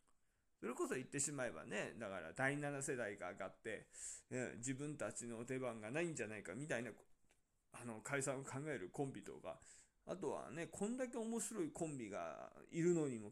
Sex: male